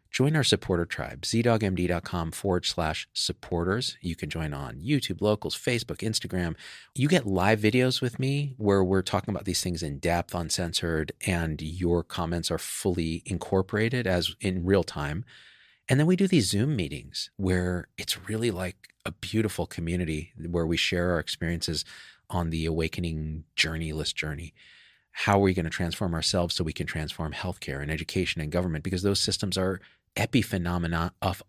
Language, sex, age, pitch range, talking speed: English, male, 40-59, 80-100 Hz, 165 wpm